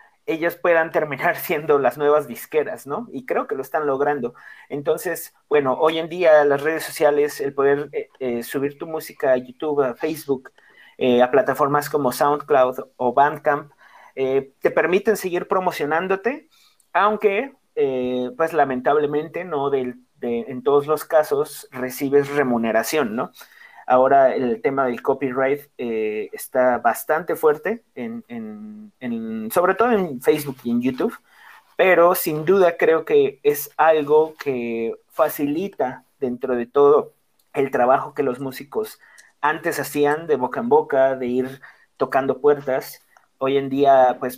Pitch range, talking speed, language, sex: 135-215 Hz, 140 wpm, Spanish, male